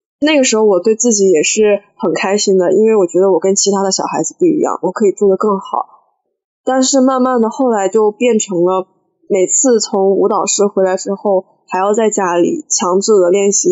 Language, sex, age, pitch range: Chinese, female, 10-29, 190-235 Hz